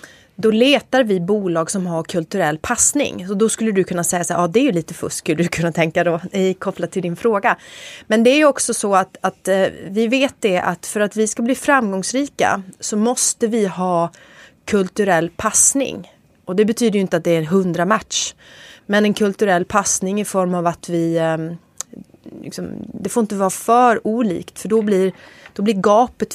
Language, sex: English, female